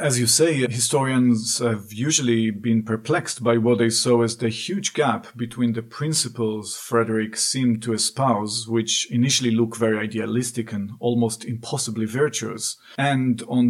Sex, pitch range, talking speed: male, 115-125 Hz, 150 wpm